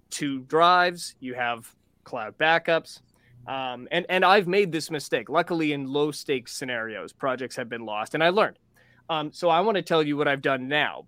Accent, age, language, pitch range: American, 20-39, English, 130-170 Hz